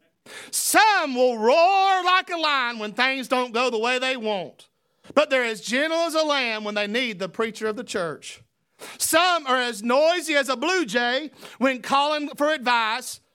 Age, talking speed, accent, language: 40-59, 185 wpm, American, English